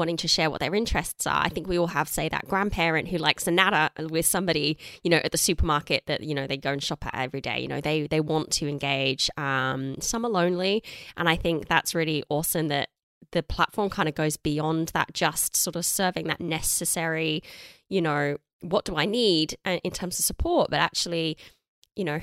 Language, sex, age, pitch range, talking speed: English, female, 20-39, 150-180 Hz, 220 wpm